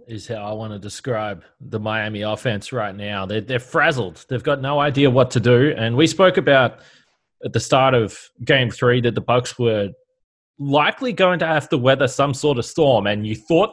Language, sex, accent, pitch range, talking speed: English, male, Australian, 120-155 Hz, 210 wpm